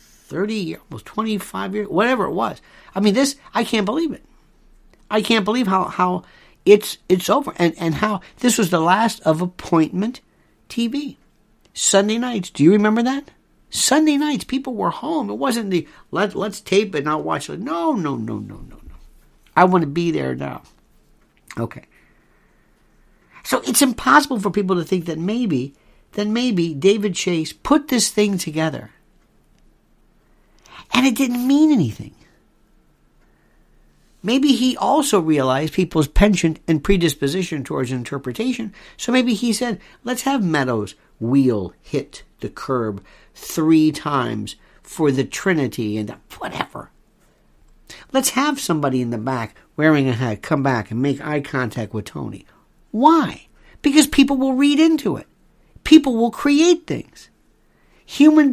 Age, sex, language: 60-79, male, English